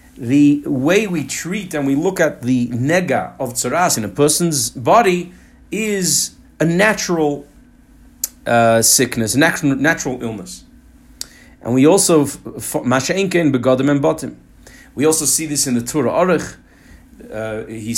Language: English